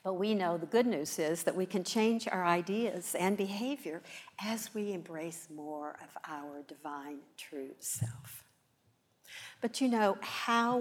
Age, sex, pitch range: 60-79, female, 155-205 Hz